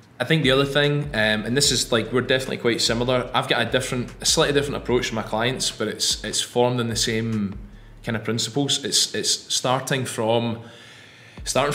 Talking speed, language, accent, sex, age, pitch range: 205 wpm, English, British, male, 20-39, 110-130 Hz